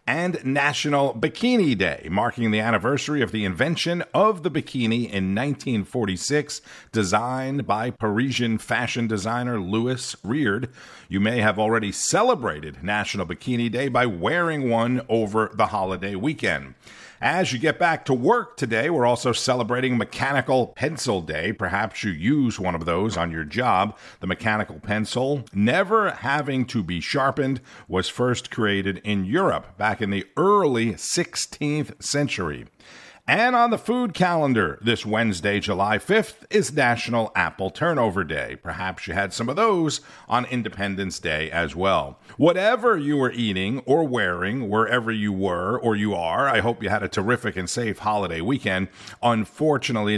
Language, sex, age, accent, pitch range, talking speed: English, male, 50-69, American, 100-130 Hz, 150 wpm